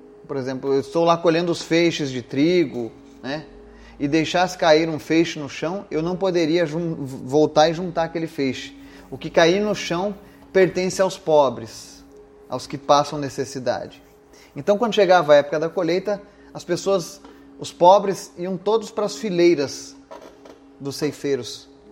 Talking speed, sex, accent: 155 wpm, male, Brazilian